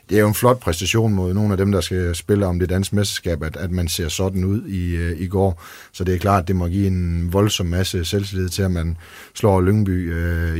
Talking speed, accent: 250 wpm, native